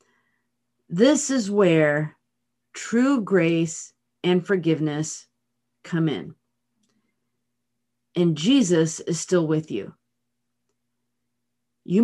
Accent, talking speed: American, 80 wpm